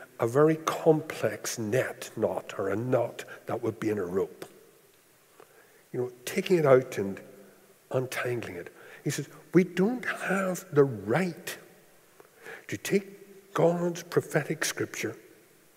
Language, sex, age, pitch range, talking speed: English, male, 60-79, 150-210 Hz, 130 wpm